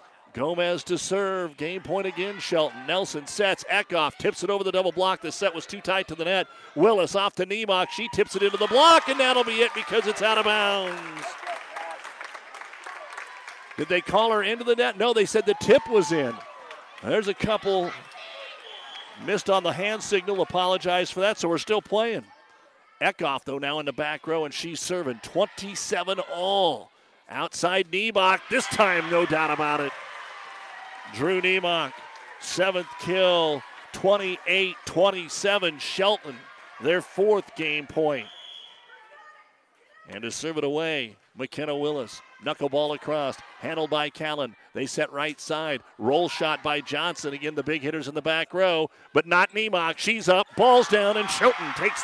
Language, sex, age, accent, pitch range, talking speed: English, male, 50-69, American, 155-200 Hz, 160 wpm